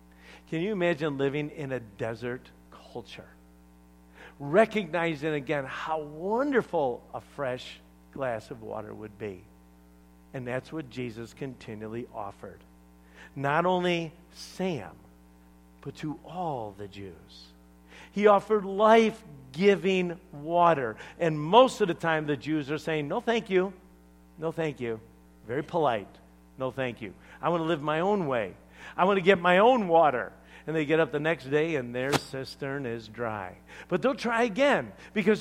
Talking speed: 145 wpm